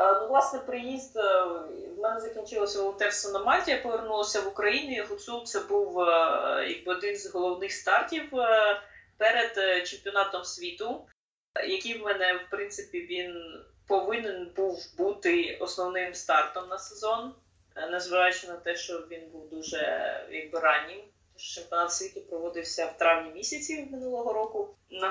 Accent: native